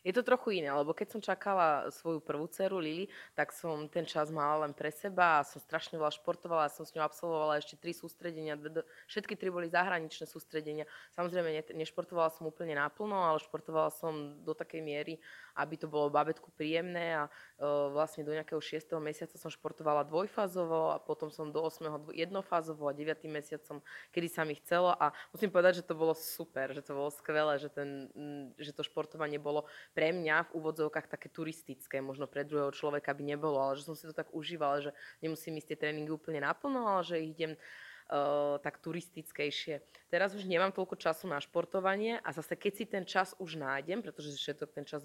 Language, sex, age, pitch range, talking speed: Slovak, female, 20-39, 150-170 Hz, 200 wpm